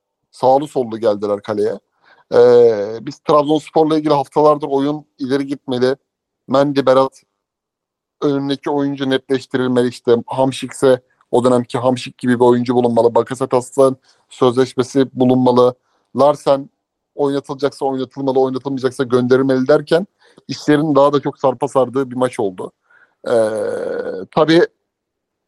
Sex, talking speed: male, 110 wpm